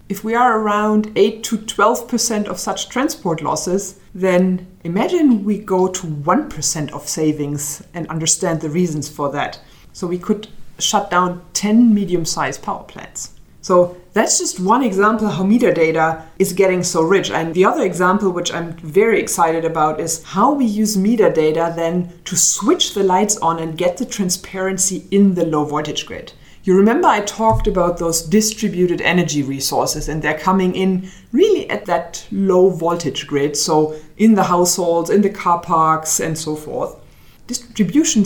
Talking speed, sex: 165 wpm, female